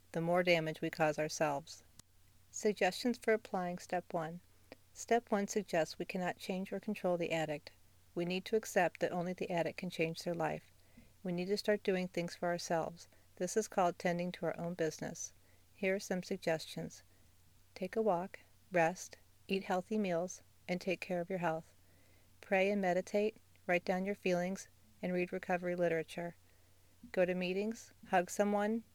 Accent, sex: American, female